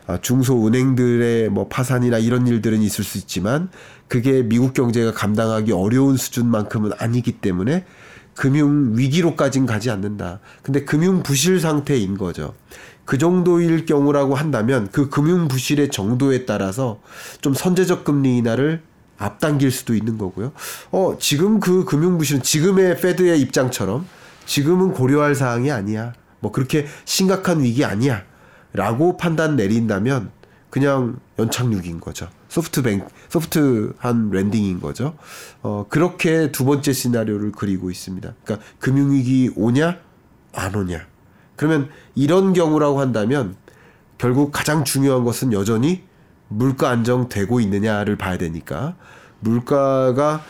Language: Korean